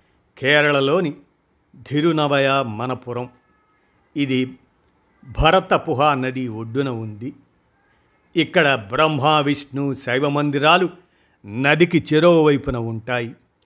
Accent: native